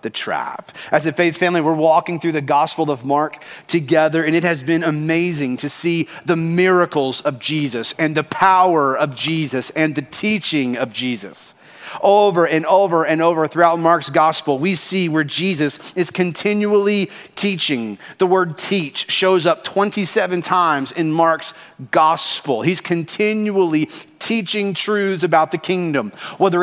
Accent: American